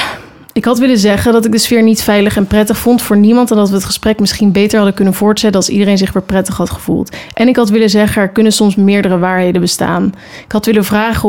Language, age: Dutch, 30-49